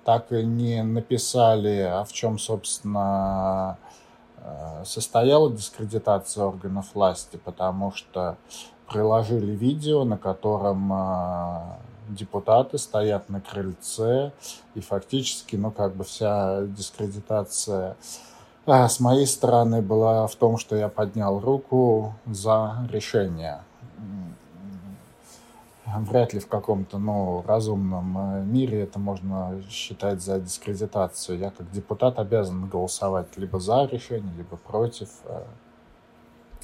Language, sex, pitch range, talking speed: English, male, 100-120 Hz, 105 wpm